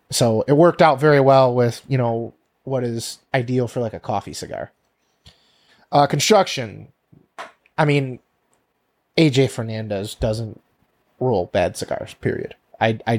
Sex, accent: male, American